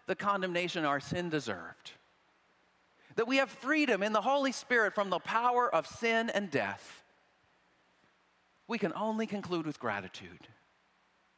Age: 50-69